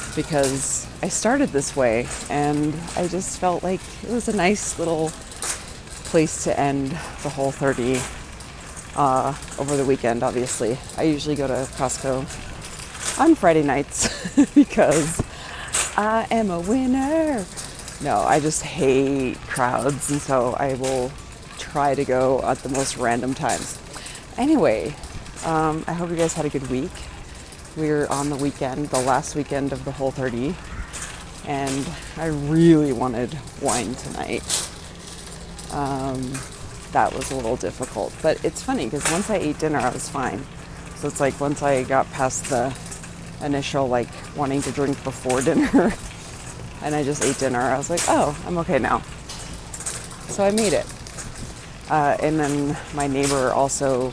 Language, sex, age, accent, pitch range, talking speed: English, female, 30-49, American, 130-155 Hz, 150 wpm